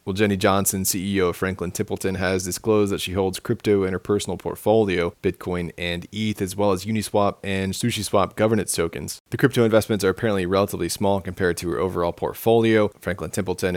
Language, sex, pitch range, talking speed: English, male, 90-100 Hz, 185 wpm